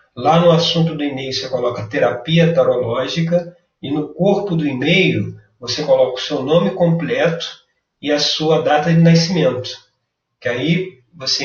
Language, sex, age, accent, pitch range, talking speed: Portuguese, male, 40-59, Brazilian, 115-160 Hz, 150 wpm